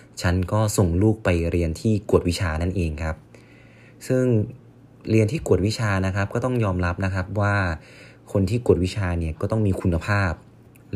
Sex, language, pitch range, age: male, Thai, 85-110 Hz, 20-39